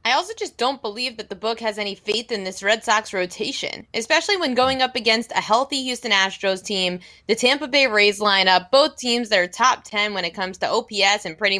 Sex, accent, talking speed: female, American, 230 wpm